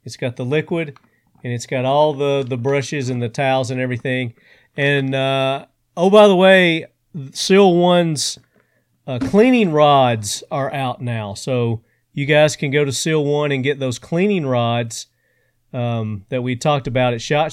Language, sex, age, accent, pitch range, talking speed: English, male, 40-59, American, 125-155 Hz, 170 wpm